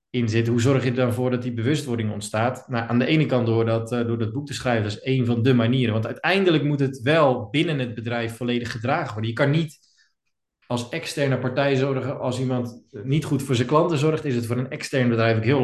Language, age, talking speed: Dutch, 20-39, 250 wpm